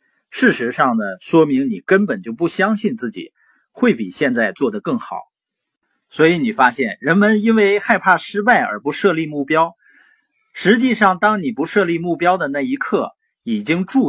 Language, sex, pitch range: Chinese, male, 140-225 Hz